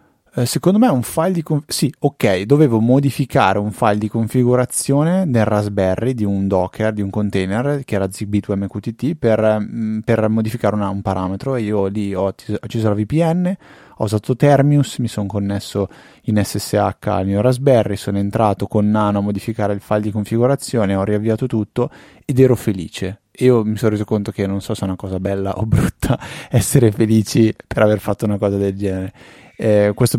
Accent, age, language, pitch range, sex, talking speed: native, 20-39, Italian, 100-115 Hz, male, 185 wpm